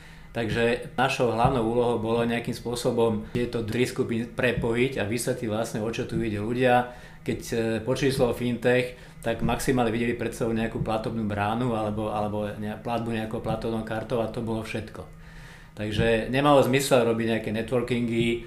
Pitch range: 115-125 Hz